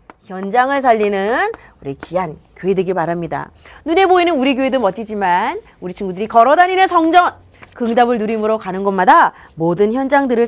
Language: Korean